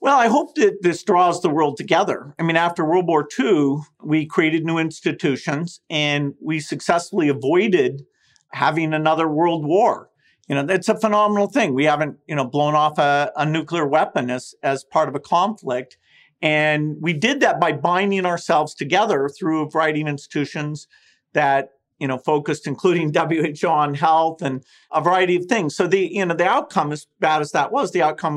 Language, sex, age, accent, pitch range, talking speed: English, male, 50-69, American, 150-180 Hz, 185 wpm